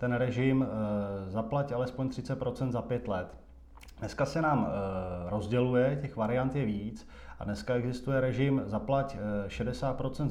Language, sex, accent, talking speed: Czech, male, native, 130 wpm